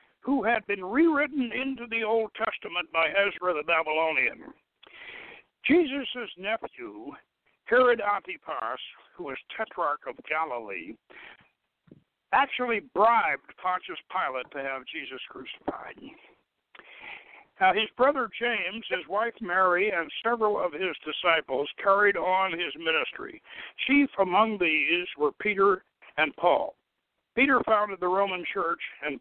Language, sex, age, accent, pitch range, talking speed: English, male, 60-79, American, 175-260 Hz, 120 wpm